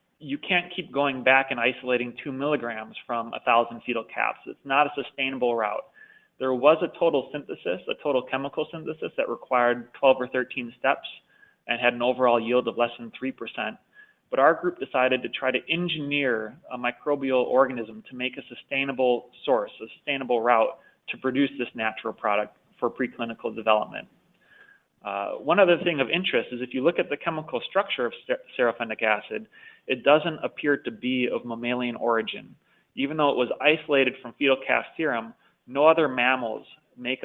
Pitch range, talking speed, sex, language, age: 115-145 Hz, 175 wpm, male, English, 30-49